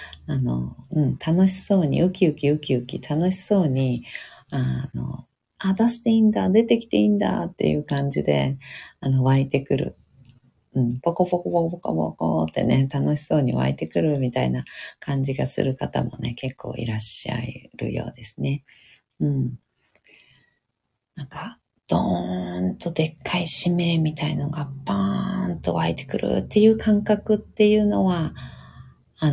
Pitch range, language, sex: 110-165 Hz, Japanese, female